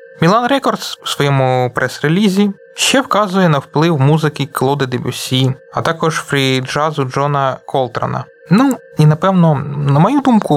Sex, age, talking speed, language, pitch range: male, 20-39, 130 wpm, Ukrainian, 130-175 Hz